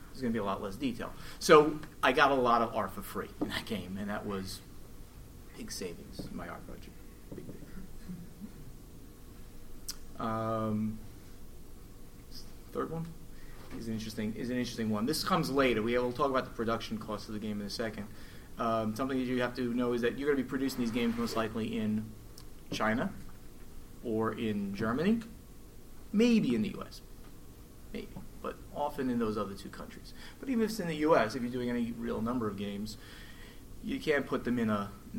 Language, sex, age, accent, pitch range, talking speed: English, male, 30-49, American, 105-130 Hz, 190 wpm